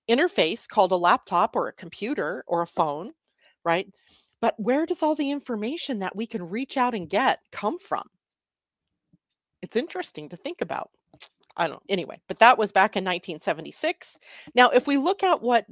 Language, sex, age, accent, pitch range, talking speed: English, female, 40-59, American, 185-245 Hz, 180 wpm